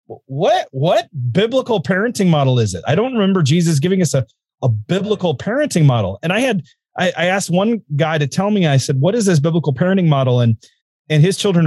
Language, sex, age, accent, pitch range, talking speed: English, male, 30-49, American, 145-210 Hz, 210 wpm